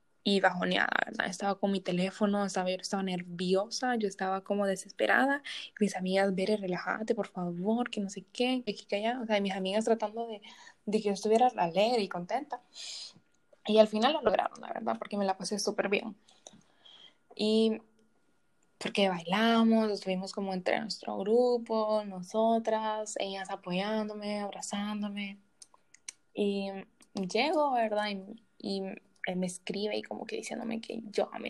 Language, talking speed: Spanish, 150 wpm